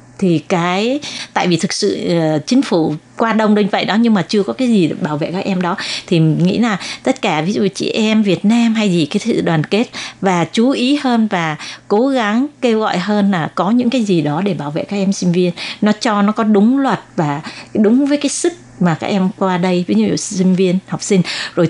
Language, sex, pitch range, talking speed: Vietnamese, female, 175-220 Hz, 245 wpm